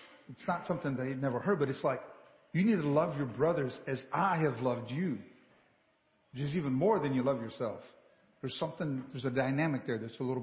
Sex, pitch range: male, 130-180 Hz